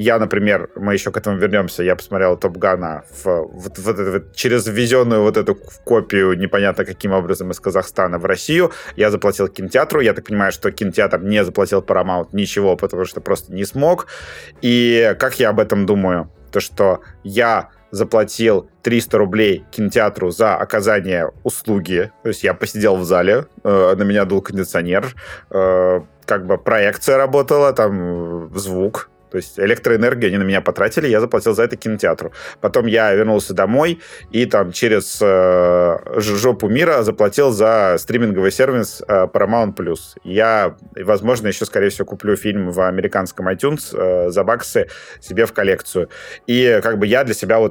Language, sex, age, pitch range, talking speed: Russian, male, 30-49, 95-110 Hz, 155 wpm